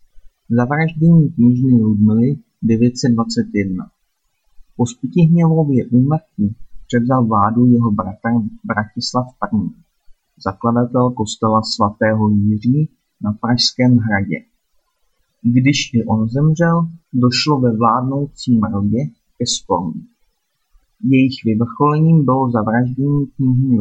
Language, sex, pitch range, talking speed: Czech, male, 110-130 Hz, 90 wpm